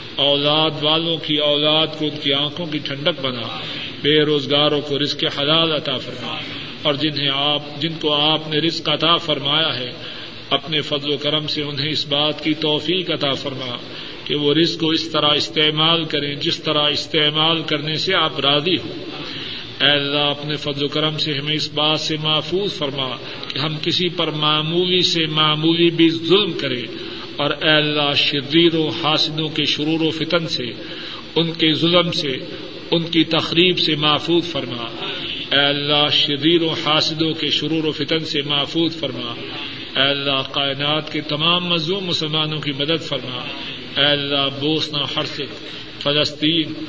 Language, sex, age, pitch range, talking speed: Urdu, male, 40-59, 145-160 Hz, 155 wpm